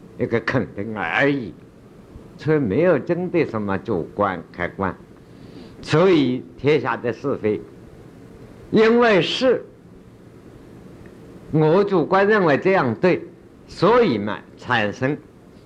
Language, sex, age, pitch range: Chinese, male, 60-79, 120-175 Hz